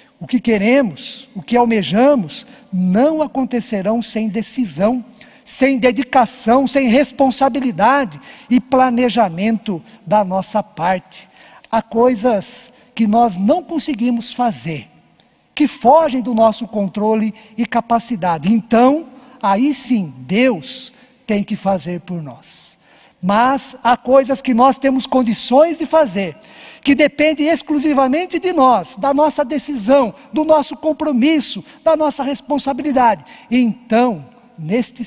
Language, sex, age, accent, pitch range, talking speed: Portuguese, male, 50-69, Brazilian, 200-270 Hz, 115 wpm